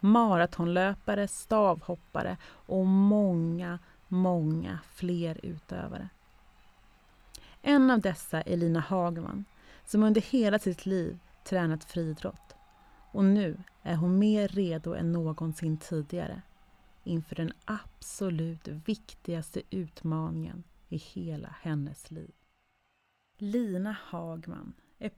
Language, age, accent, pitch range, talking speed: Swedish, 30-49, native, 160-200 Hz, 100 wpm